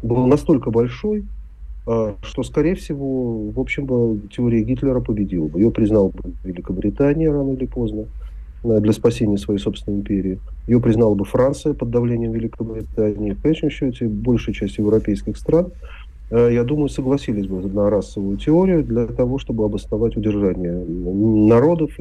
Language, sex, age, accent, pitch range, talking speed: Russian, male, 40-59, native, 95-125 Hz, 140 wpm